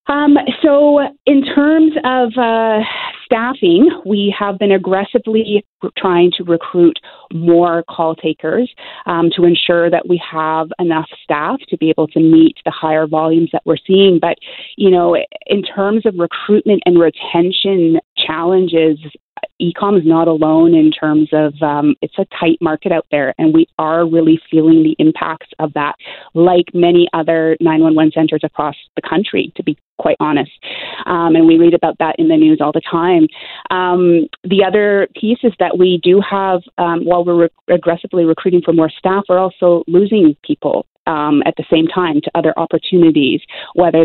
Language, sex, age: English, female, 30-49